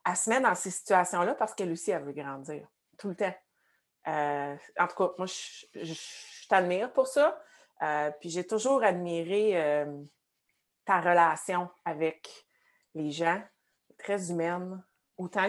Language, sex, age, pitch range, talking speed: French, female, 30-49, 160-200 Hz, 160 wpm